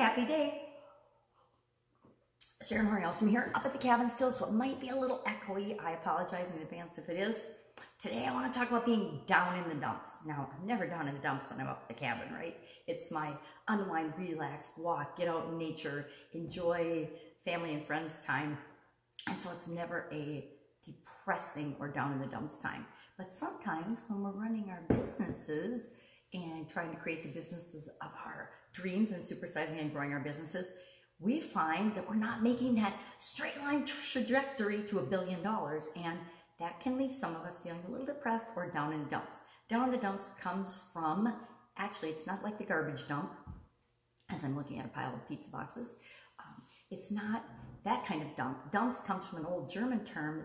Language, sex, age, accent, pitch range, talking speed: English, female, 40-59, American, 155-220 Hz, 195 wpm